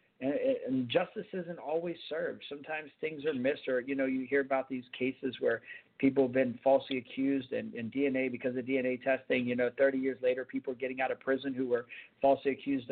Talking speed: 205 wpm